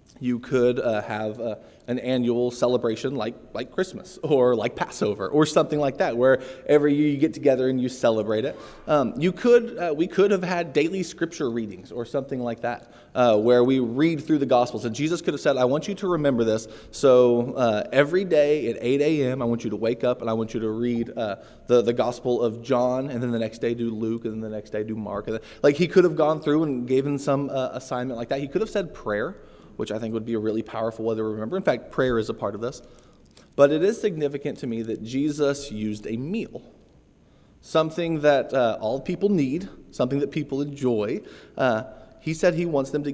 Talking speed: 230 wpm